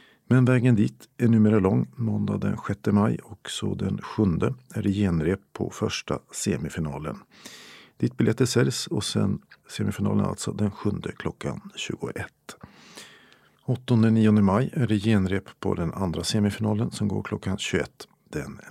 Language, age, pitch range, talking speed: Swedish, 50-69, 100-115 Hz, 150 wpm